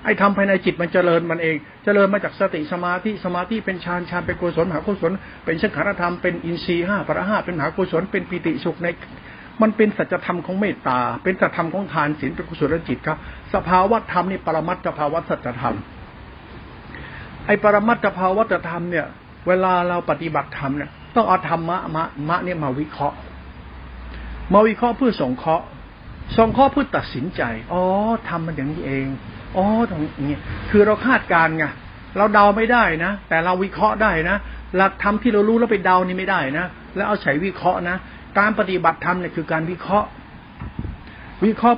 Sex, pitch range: male, 155-200 Hz